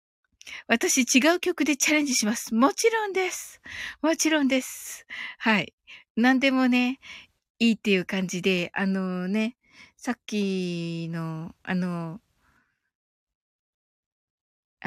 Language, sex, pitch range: Japanese, female, 215-305 Hz